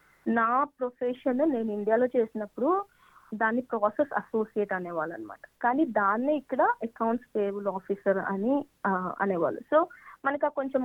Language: Telugu